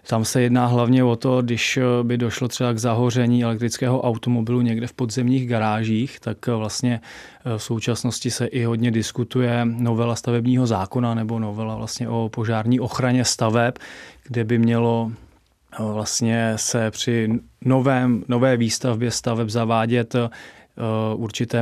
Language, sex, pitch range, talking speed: Czech, male, 115-125 Hz, 125 wpm